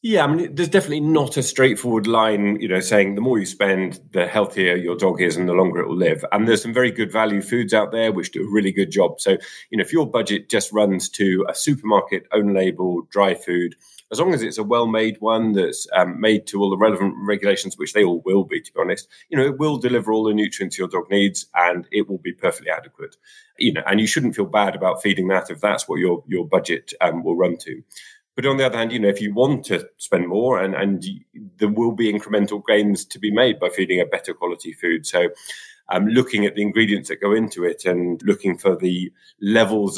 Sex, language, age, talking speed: male, English, 30-49, 240 wpm